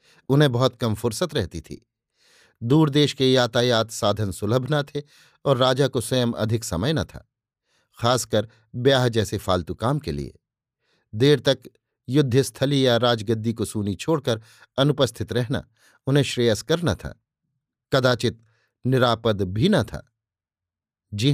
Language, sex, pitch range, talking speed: Hindi, male, 110-140 Hz, 140 wpm